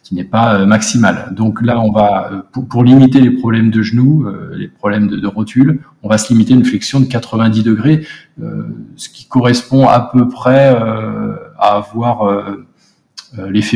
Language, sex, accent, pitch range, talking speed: French, male, French, 105-125 Hz, 185 wpm